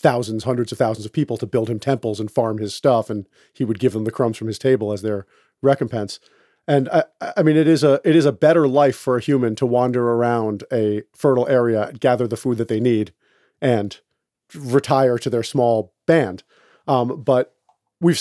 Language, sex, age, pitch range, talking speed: English, male, 40-59, 120-155 Hz, 210 wpm